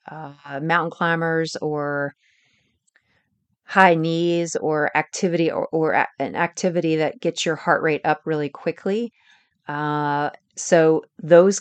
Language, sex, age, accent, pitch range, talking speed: English, female, 40-59, American, 155-180 Hz, 120 wpm